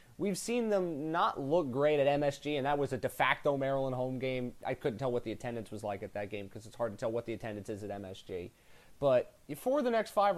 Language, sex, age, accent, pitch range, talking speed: English, male, 30-49, American, 125-180 Hz, 260 wpm